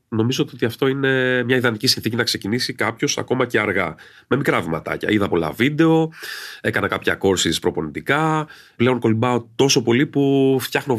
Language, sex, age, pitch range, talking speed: Greek, male, 30-49, 100-140 Hz, 160 wpm